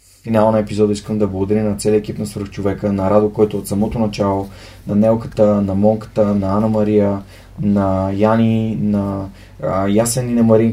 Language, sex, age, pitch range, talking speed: Bulgarian, male, 20-39, 100-110 Hz, 185 wpm